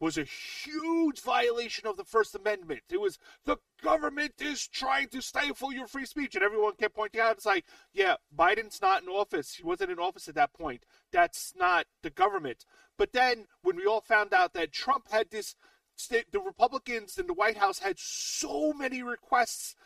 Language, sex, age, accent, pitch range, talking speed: English, male, 40-59, American, 255-380 Hz, 195 wpm